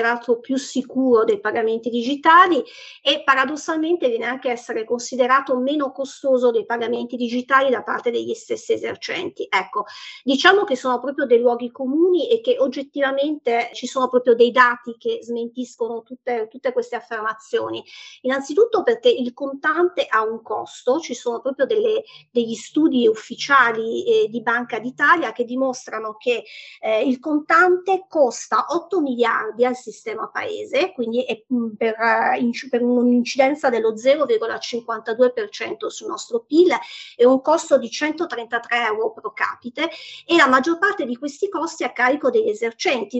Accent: native